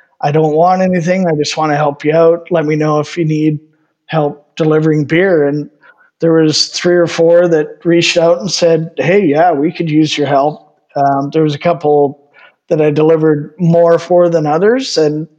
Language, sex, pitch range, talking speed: English, male, 150-175 Hz, 200 wpm